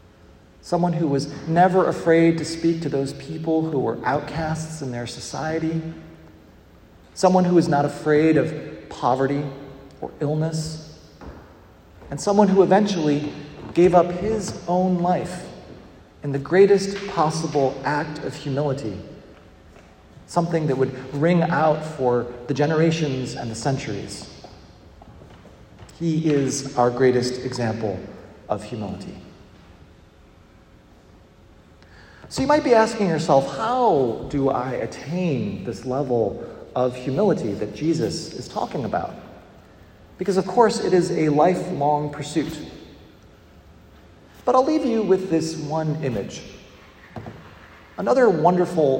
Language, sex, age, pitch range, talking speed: English, male, 40-59, 110-165 Hz, 120 wpm